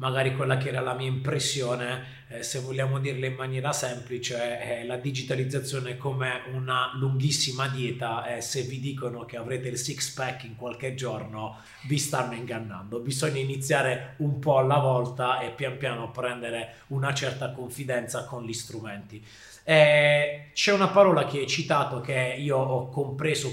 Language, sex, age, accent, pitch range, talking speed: Italian, male, 30-49, native, 120-140 Hz, 165 wpm